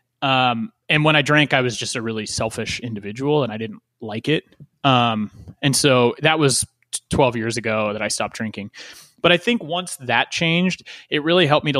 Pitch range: 120-160 Hz